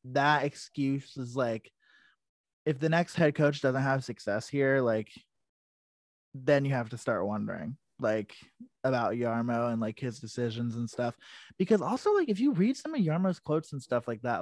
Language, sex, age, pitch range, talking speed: English, male, 20-39, 120-140 Hz, 180 wpm